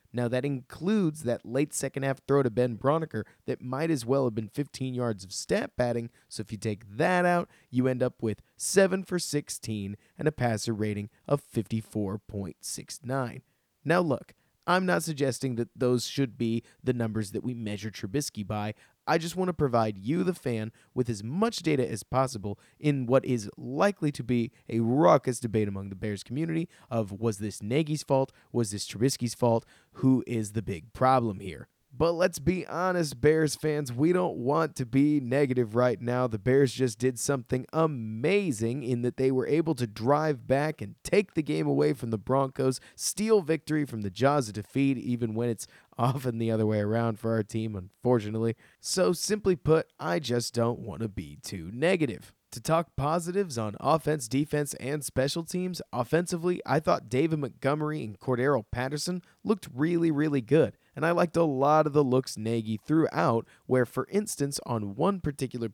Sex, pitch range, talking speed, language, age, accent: male, 115-150 Hz, 185 wpm, English, 30-49, American